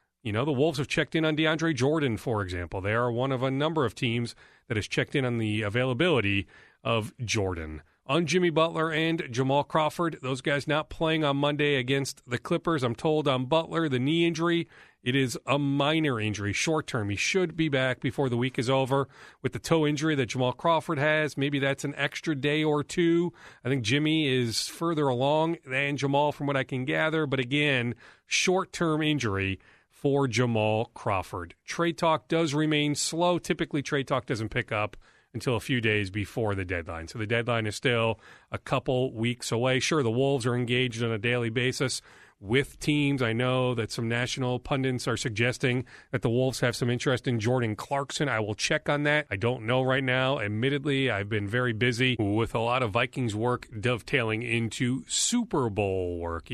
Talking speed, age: 195 wpm, 40-59